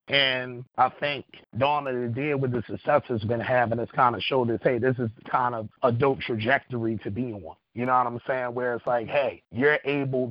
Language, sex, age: English, male, 30-49